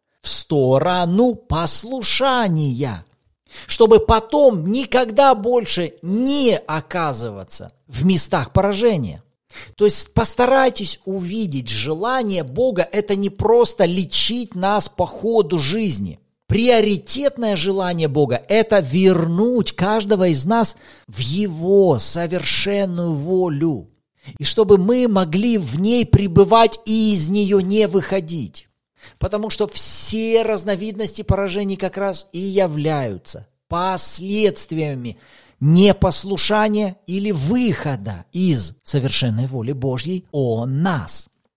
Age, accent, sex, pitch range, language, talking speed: 40-59, native, male, 150-210 Hz, Russian, 100 wpm